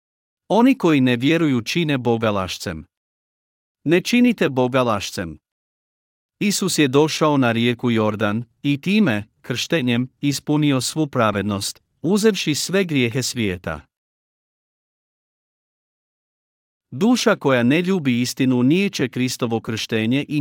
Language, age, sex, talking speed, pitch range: Croatian, 50-69, male, 105 wpm, 115-150 Hz